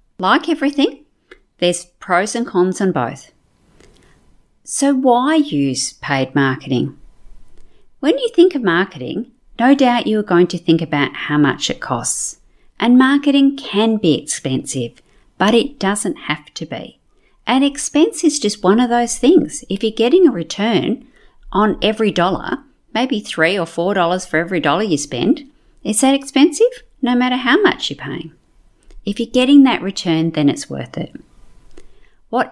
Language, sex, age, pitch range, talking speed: English, female, 50-69, 155-265 Hz, 155 wpm